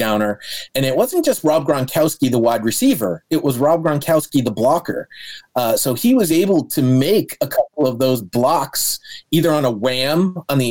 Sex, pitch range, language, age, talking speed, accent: male, 130-165 Hz, English, 30-49, 190 wpm, American